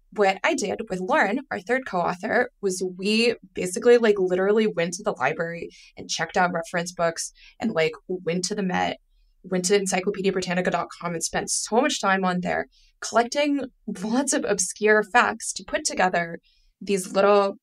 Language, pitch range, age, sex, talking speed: English, 185-240 Hz, 20-39, female, 165 wpm